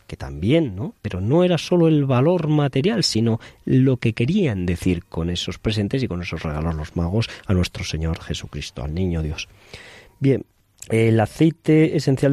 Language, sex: Spanish, male